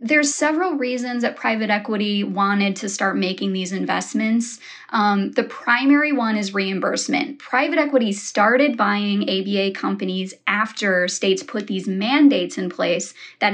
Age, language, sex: 20-39, English, female